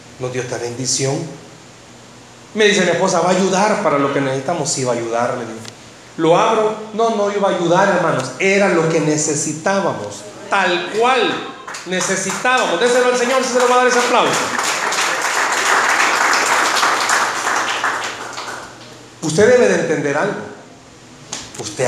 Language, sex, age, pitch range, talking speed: Spanish, male, 40-59, 150-230 Hz, 150 wpm